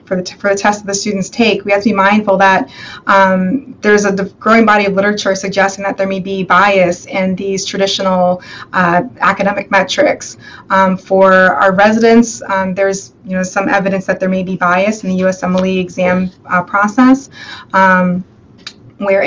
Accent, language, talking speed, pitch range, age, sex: American, English, 185 wpm, 185-205 Hz, 20-39, female